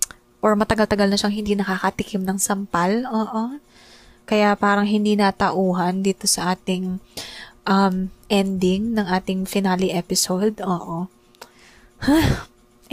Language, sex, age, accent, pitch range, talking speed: English, female, 20-39, Filipino, 185-225 Hz, 105 wpm